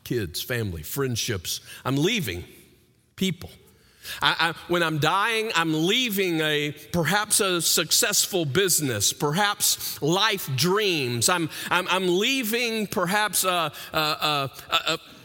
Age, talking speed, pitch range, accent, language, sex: 50-69, 120 wpm, 125-200 Hz, American, English, male